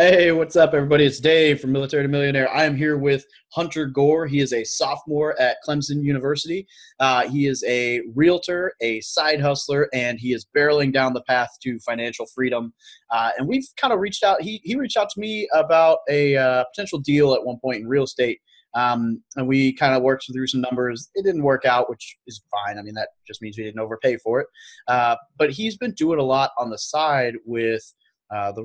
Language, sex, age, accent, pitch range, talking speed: English, male, 20-39, American, 120-150 Hz, 220 wpm